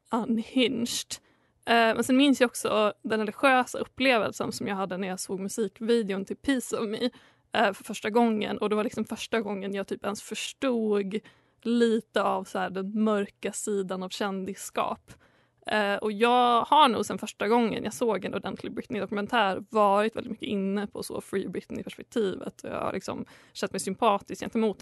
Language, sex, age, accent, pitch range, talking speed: Swedish, female, 20-39, native, 195-230 Hz, 175 wpm